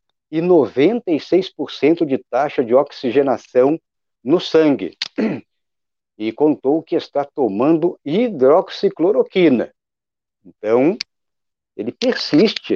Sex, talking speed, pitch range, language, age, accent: male, 80 wpm, 120-170 Hz, Portuguese, 50-69, Brazilian